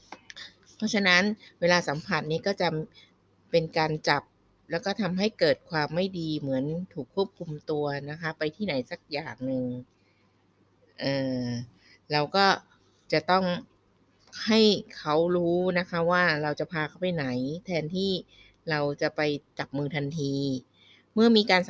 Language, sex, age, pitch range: Thai, female, 20-39, 140-185 Hz